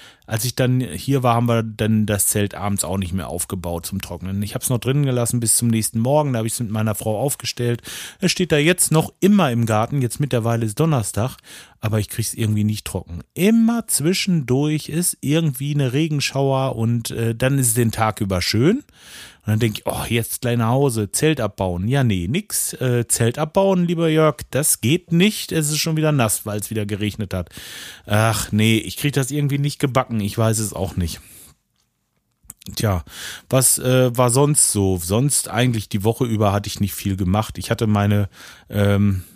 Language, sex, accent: German, male, German